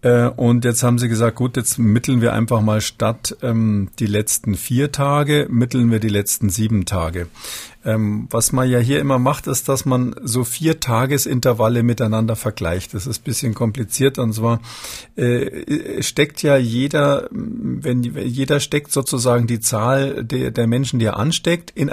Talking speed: 170 wpm